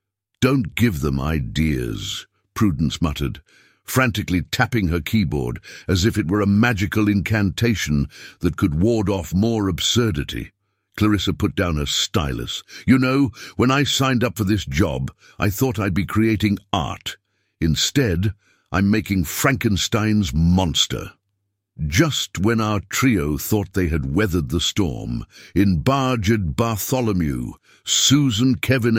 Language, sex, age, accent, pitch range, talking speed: English, male, 60-79, British, 90-115 Hz, 130 wpm